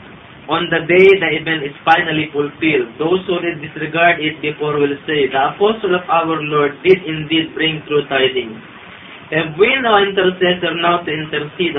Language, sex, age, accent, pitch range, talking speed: Filipino, male, 20-39, native, 135-170 Hz, 170 wpm